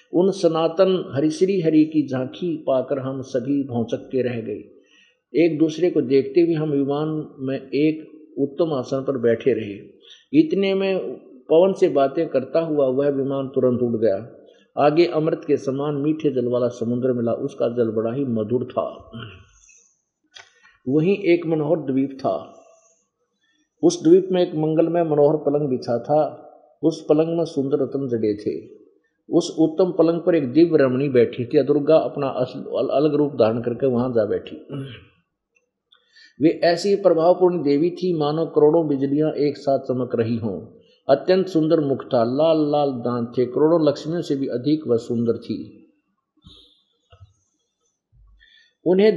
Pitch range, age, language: 135-175 Hz, 50-69, Hindi